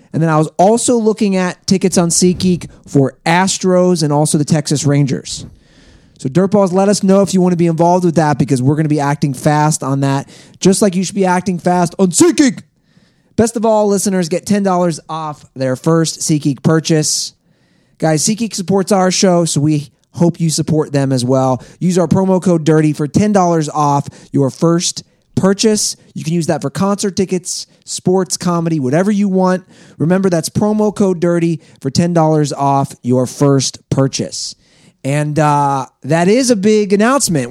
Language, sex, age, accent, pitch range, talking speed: English, male, 30-49, American, 150-190 Hz, 180 wpm